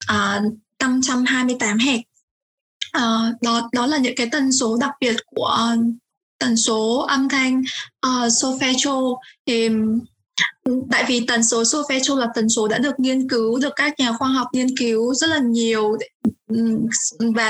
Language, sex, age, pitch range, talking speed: Vietnamese, female, 20-39, 230-270 Hz, 150 wpm